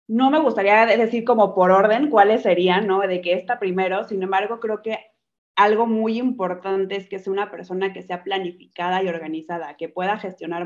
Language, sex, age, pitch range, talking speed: Spanish, female, 20-39, 170-195 Hz, 190 wpm